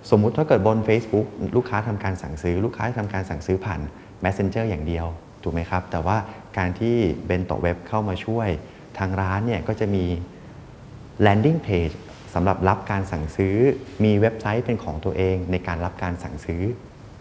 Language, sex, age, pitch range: Thai, male, 30-49, 90-115 Hz